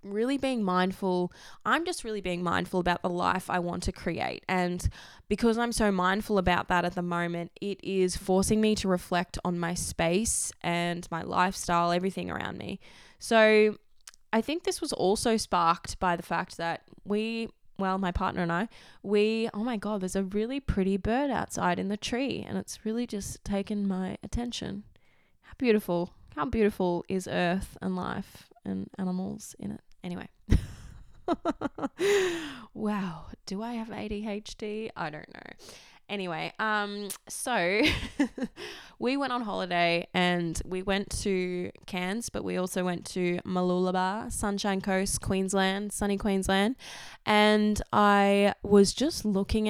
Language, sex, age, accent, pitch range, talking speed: English, female, 10-29, Australian, 180-215 Hz, 150 wpm